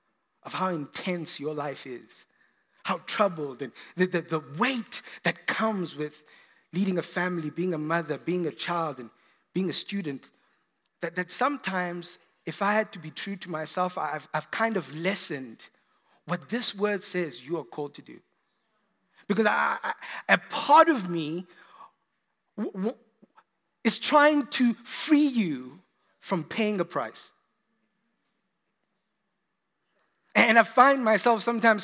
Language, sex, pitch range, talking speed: English, male, 170-235 Hz, 140 wpm